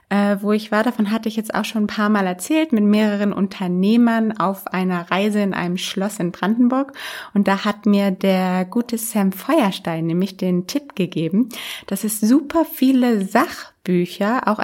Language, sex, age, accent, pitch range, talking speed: German, female, 20-39, German, 190-230 Hz, 170 wpm